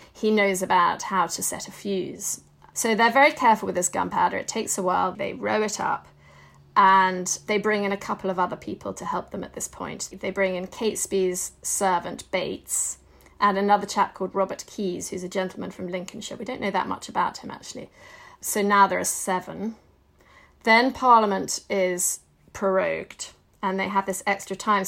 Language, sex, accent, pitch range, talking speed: English, female, British, 185-215 Hz, 190 wpm